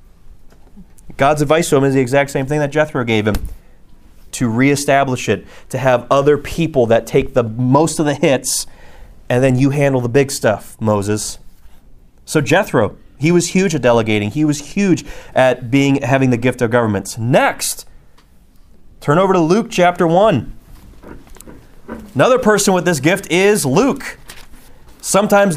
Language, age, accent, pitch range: English, 30-49, American, 120-170 Hz